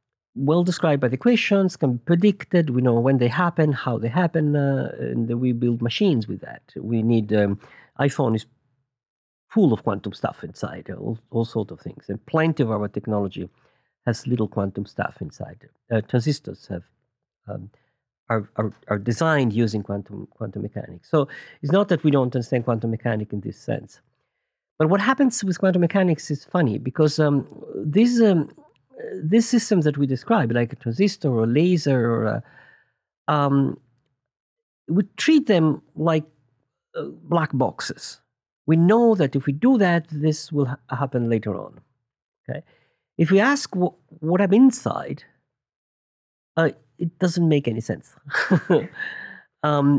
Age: 50-69